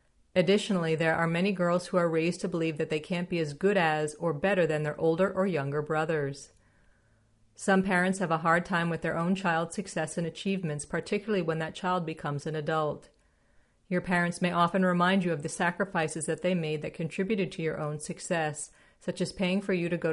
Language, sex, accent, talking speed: English, female, American, 210 wpm